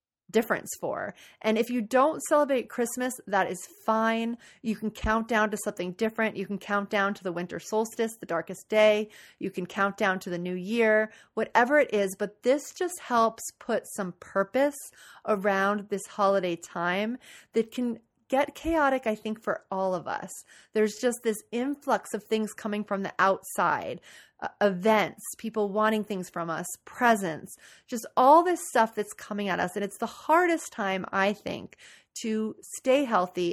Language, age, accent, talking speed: English, 30-49, American, 175 wpm